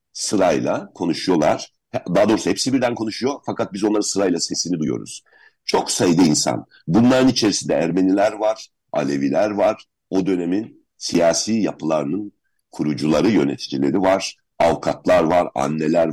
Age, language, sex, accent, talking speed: 60-79, Turkish, male, native, 120 wpm